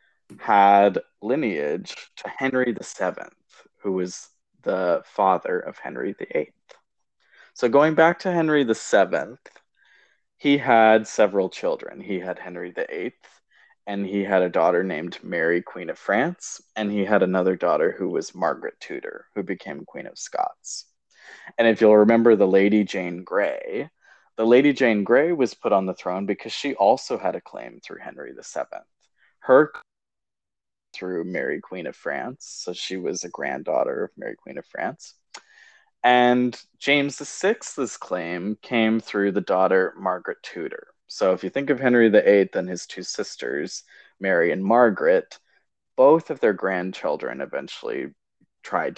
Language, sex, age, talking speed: English, male, 20-39, 150 wpm